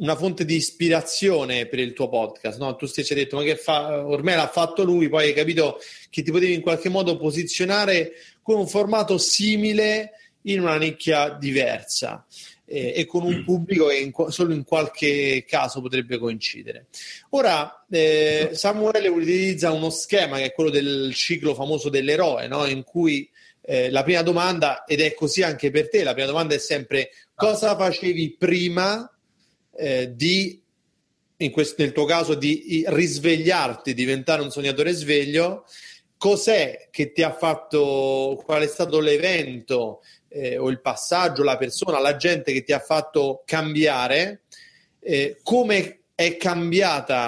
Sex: male